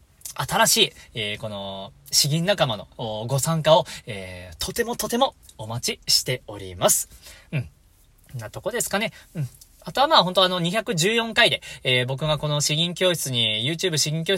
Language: Japanese